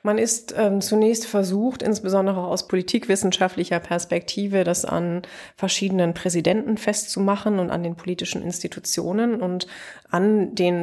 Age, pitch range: 20-39, 175-195 Hz